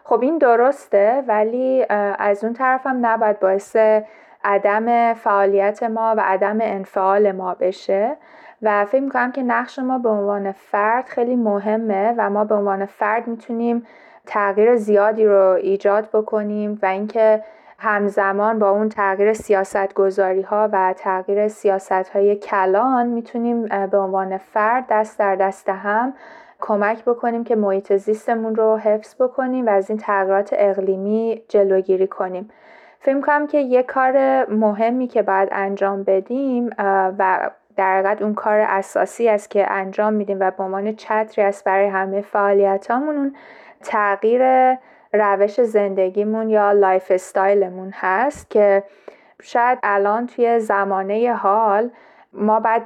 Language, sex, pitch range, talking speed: Persian, female, 195-230 Hz, 135 wpm